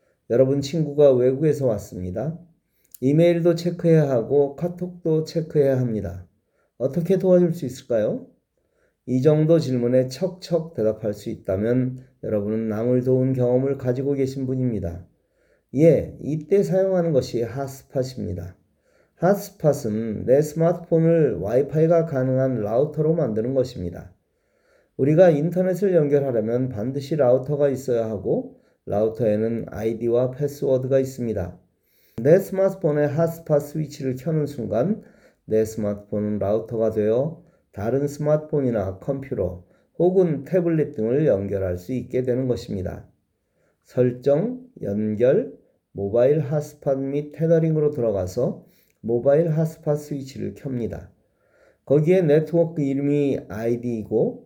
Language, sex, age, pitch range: Korean, male, 40-59, 110-155 Hz